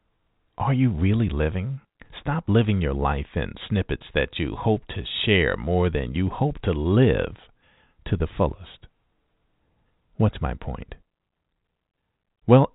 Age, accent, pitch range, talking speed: 50-69, American, 85-115 Hz, 130 wpm